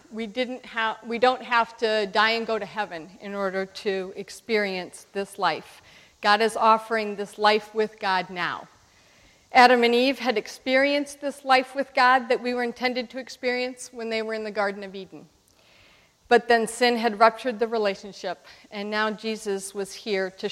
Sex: female